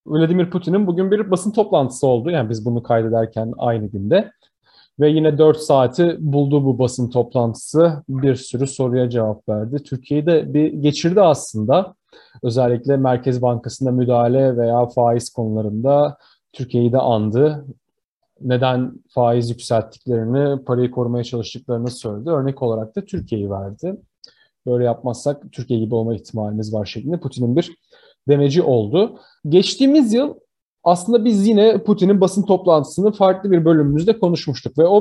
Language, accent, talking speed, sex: Turkish, native, 135 wpm, male